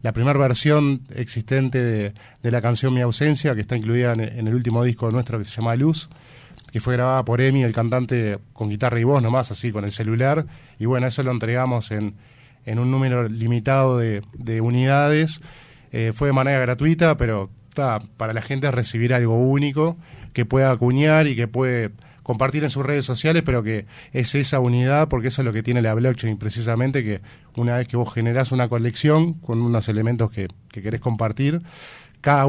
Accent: Argentinian